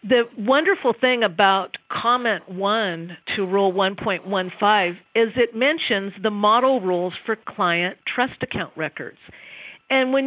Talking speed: 130 wpm